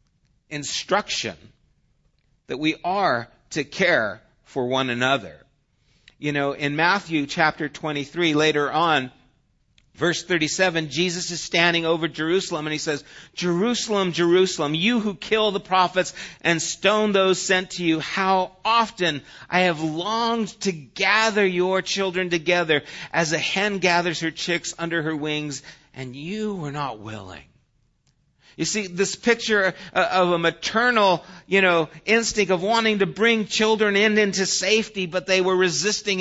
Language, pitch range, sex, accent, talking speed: English, 160-195 Hz, male, American, 145 wpm